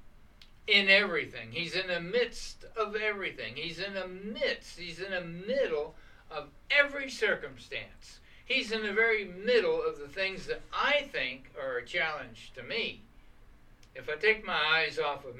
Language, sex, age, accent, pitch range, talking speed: English, male, 60-79, American, 145-235 Hz, 165 wpm